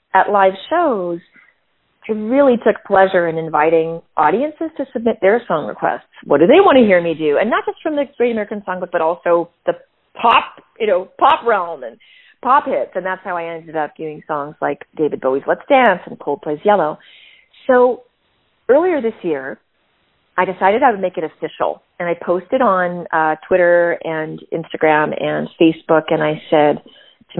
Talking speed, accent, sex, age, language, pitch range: 185 wpm, American, female, 30-49, English, 160-225 Hz